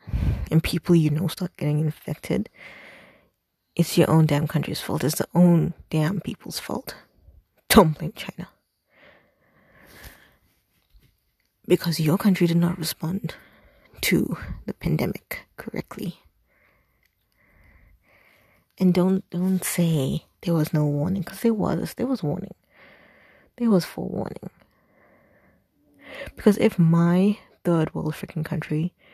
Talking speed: 115 wpm